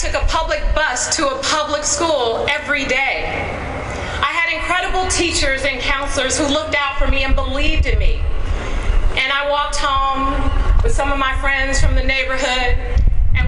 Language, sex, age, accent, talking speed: English, female, 40-59, American, 175 wpm